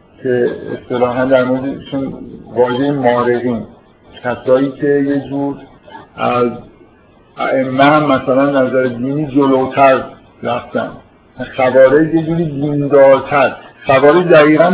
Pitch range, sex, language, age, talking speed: 125-145 Hz, male, Persian, 50-69, 90 wpm